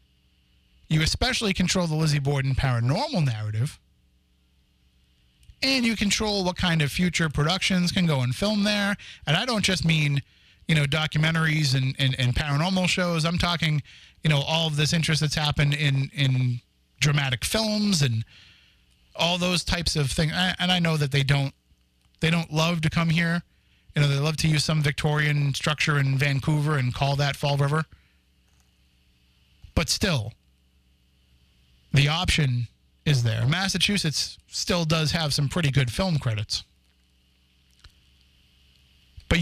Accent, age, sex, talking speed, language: American, 30-49, male, 150 wpm, English